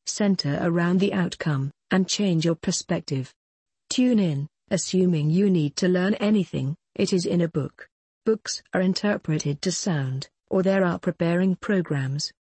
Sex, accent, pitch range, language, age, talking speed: female, British, 160-195 Hz, English, 50-69, 150 wpm